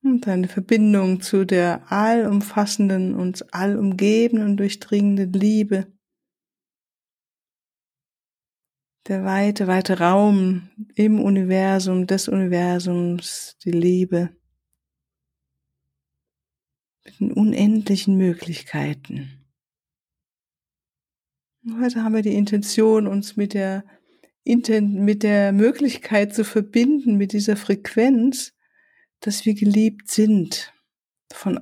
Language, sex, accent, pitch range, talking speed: German, female, German, 175-215 Hz, 85 wpm